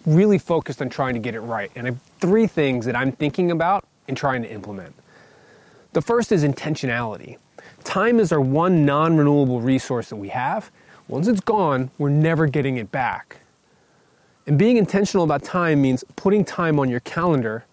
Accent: American